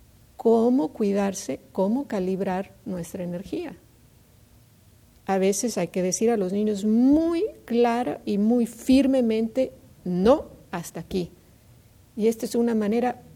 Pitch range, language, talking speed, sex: 180-235 Hz, English, 120 wpm, female